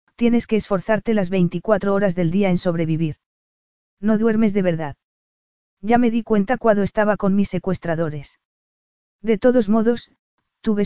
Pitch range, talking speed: 175-220 Hz, 150 wpm